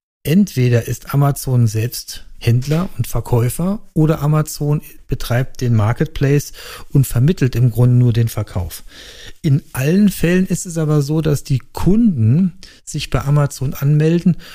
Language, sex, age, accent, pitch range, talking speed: German, male, 40-59, German, 120-150 Hz, 135 wpm